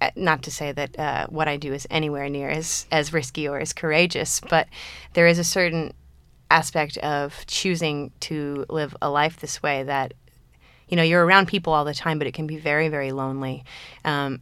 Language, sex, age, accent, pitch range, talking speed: English, female, 20-39, American, 145-165 Hz, 200 wpm